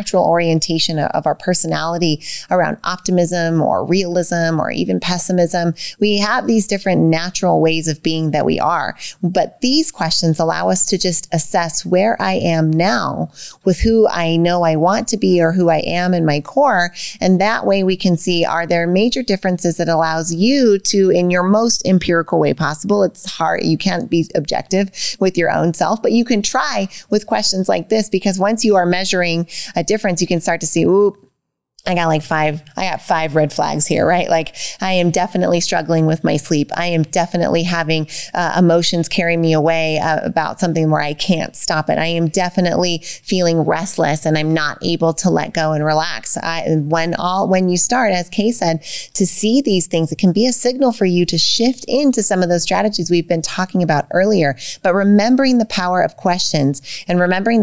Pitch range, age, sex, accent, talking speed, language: 165-195 Hz, 30-49, female, American, 200 wpm, English